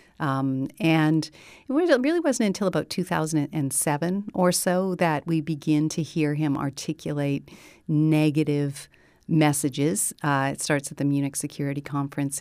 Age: 50-69